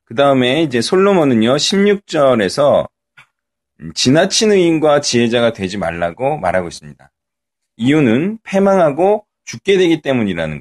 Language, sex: Korean, male